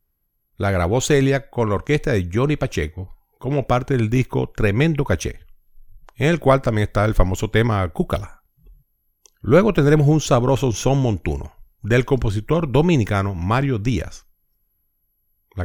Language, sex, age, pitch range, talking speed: English, male, 50-69, 95-135 Hz, 140 wpm